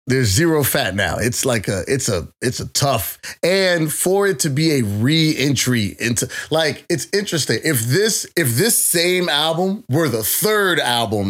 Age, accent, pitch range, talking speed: 30-49, American, 125-165 Hz, 175 wpm